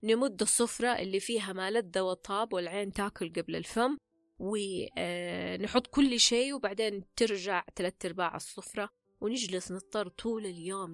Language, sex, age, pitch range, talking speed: Arabic, female, 20-39, 175-225 Hz, 120 wpm